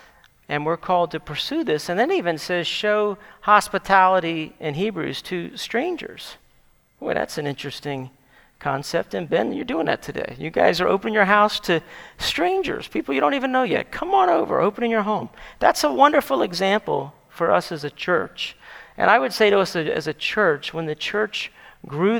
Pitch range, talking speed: 155-215 Hz, 190 wpm